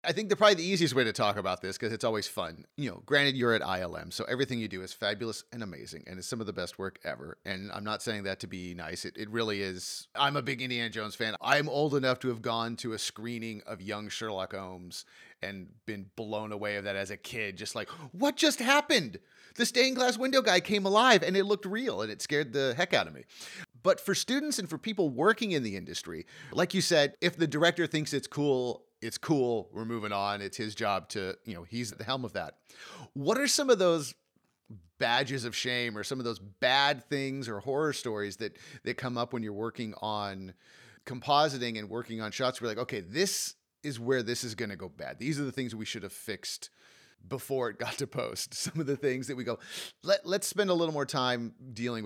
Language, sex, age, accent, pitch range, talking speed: English, male, 30-49, American, 105-145 Hz, 240 wpm